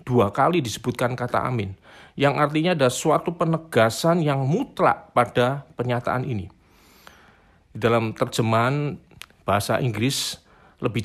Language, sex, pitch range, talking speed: Indonesian, male, 115-165 Hz, 110 wpm